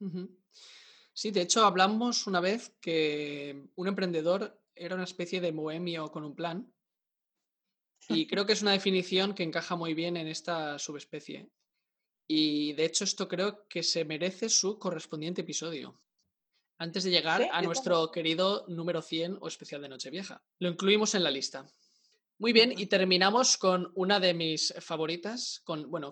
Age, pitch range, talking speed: 20-39, 160-200 Hz, 155 wpm